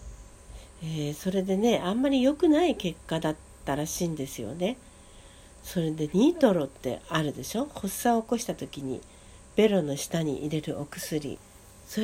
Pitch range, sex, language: 155-220 Hz, female, Japanese